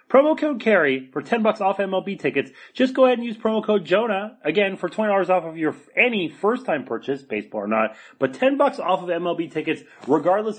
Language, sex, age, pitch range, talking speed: English, male, 30-49, 125-195 Hz, 220 wpm